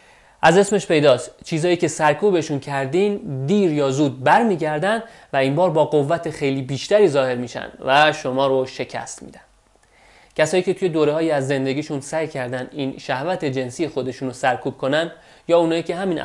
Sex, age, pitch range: male, 30-49, 130-160 Hz